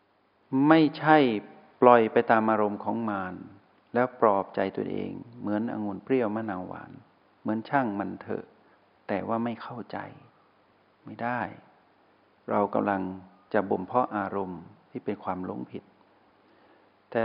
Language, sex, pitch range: Thai, male, 100-125 Hz